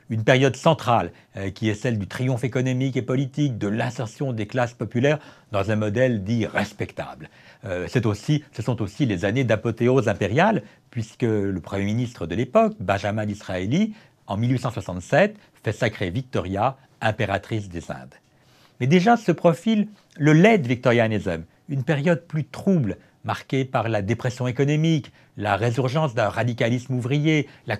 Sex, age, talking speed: male, 60-79, 155 wpm